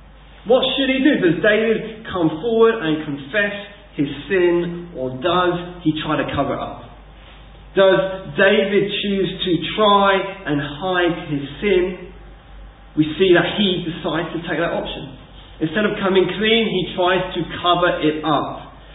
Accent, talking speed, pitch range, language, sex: British, 150 wpm, 150-190 Hz, English, male